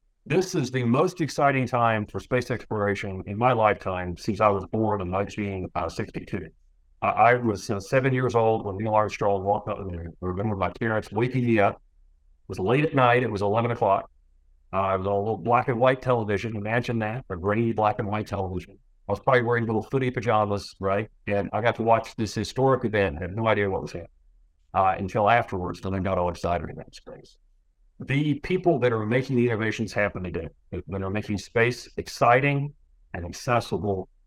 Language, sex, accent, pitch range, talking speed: English, male, American, 95-120 Hz, 205 wpm